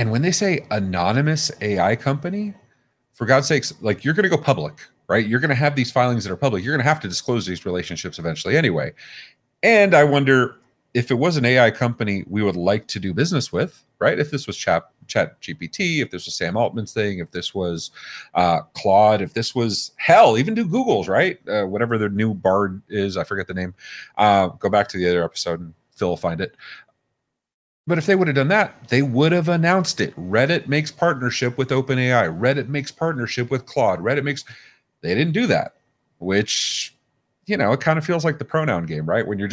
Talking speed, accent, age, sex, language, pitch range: 215 wpm, American, 40-59, male, English, 100-145 Hz